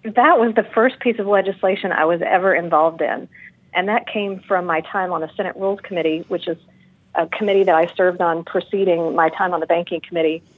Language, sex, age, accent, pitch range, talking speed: English, female, 40-59, American, 170-195 Hz, 215 wpm